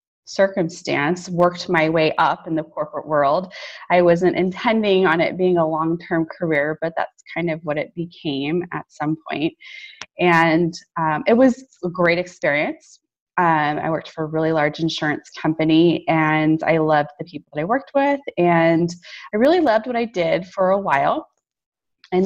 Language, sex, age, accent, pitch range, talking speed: English, female, 20-39, American, 155-185 Hz, 175 wpm